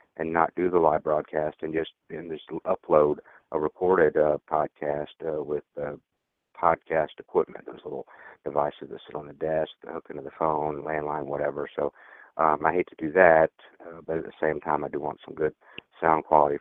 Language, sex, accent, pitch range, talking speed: English, male, American, 80-110 Hz, 200 wpm